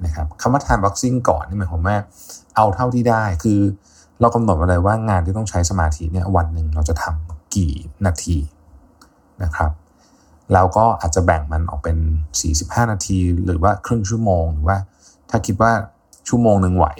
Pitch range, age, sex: 80-100 Hz, 20-39, male